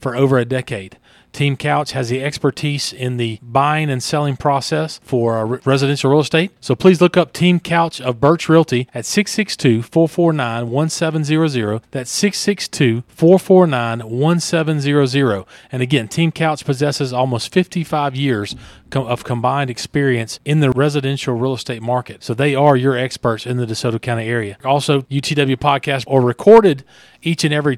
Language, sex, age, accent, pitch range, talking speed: English, male, 40-59, American, 125-150 Hz, 145 wpm